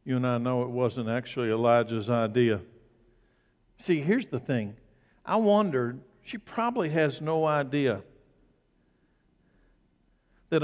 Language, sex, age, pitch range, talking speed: English, male, 60-79, 130-175 Hz, 120 wpm